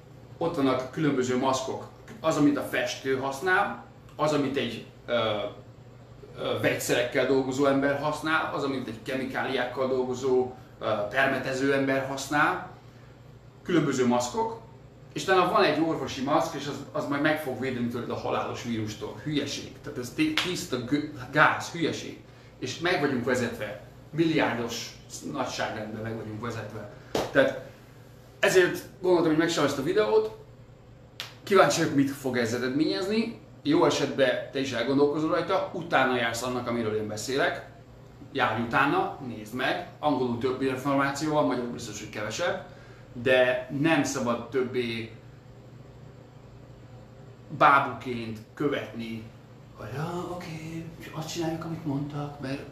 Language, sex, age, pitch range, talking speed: Hungarian, male, 30-49, 125-145 Hz, 120 wpm